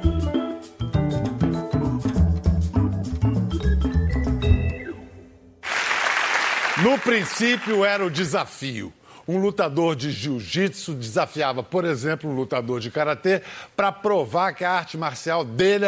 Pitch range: 130-190 Hz